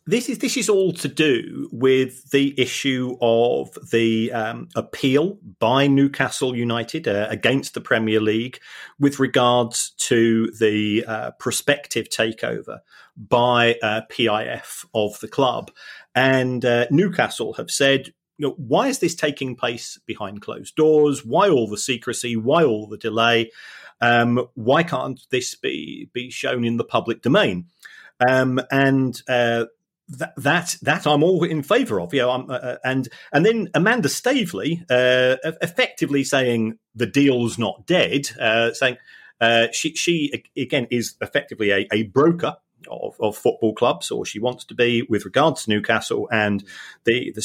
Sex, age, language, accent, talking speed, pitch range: male, 40-59, English, British, 155 wpm, 115-150 Hz